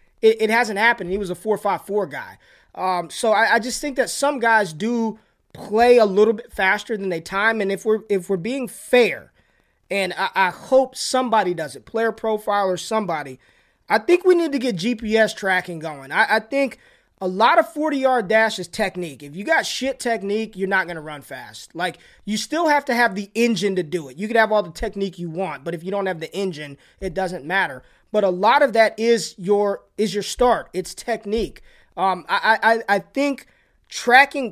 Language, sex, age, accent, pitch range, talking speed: English, male, 20-39, American, 190-240 Hz, 215 wpm